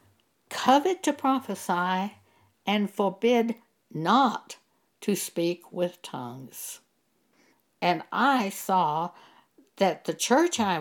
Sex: female